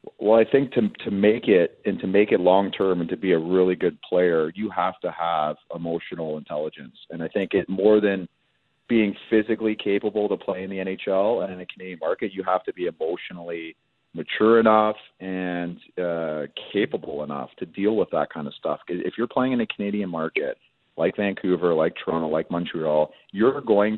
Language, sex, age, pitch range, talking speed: English, male, 40-59, 85-105 Hz, 195 wpm